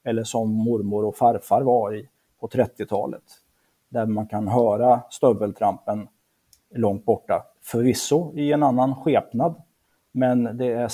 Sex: male